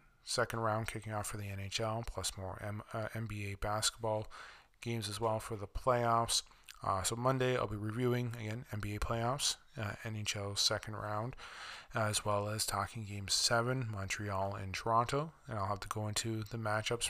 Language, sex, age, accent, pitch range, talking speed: English, male, 20-39, American, 105-120 Hz, 170 wpm